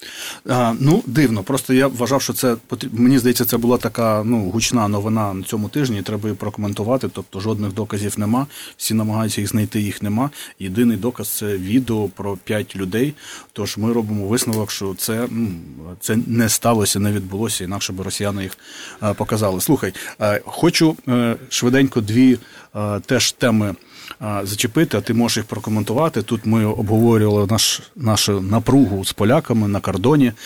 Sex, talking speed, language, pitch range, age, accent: male, 155 wpm, Ukrainian, 105-125 Hz, 30-49, native